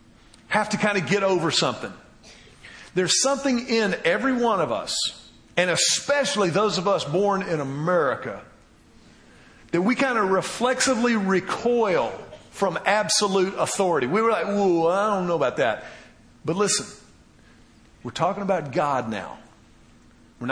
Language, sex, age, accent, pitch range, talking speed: English, male, 50-69, American, 155-210 Hz, 140 wpm